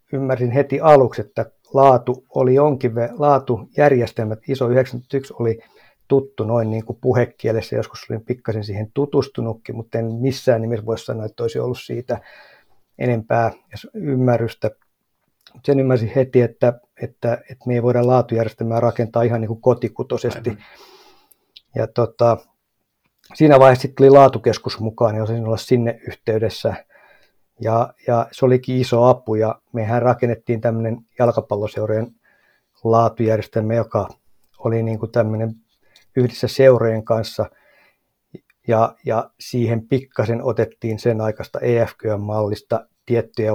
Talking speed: 120 wpm